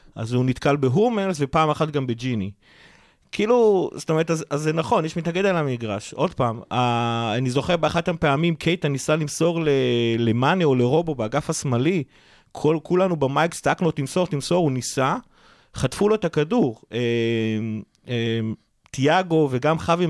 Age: 30-49